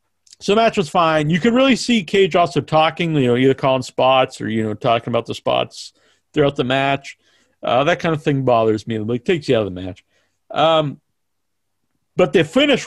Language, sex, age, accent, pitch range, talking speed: English, male, 40-59, American, 130-190 Hz, 210 wpm